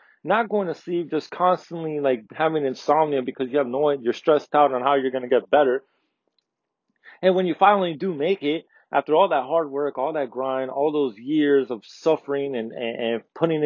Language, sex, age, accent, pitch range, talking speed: English, male, 30-49, American, 125-155 Hz, 200 wpm